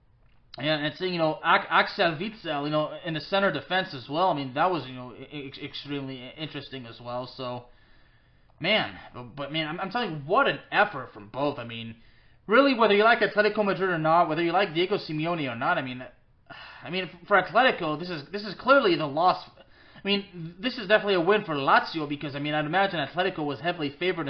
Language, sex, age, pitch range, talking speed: English, male, 30-49, 145-205 Hz, 215 wpm